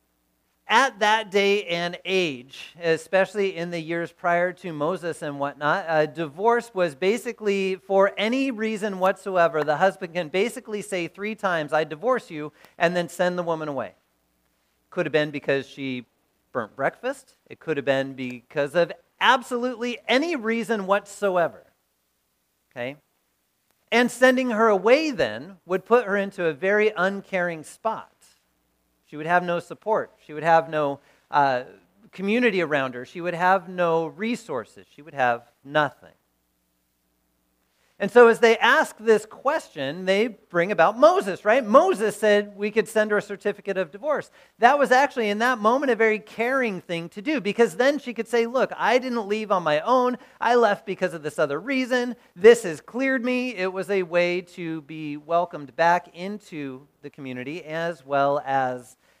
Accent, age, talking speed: American, 40-59, 165 wpm